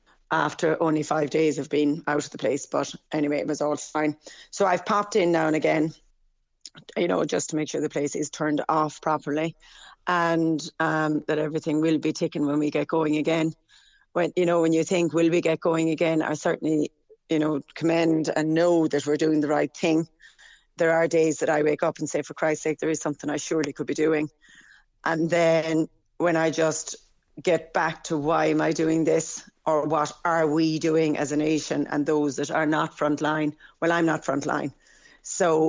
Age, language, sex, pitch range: 30-49, English, female, 150-160 Hz